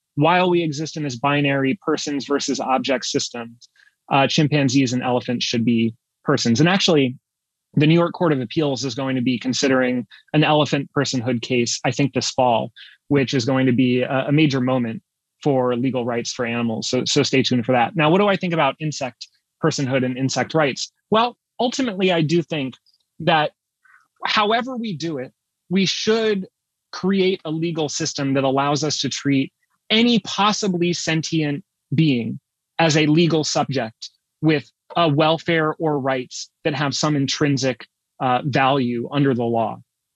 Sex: male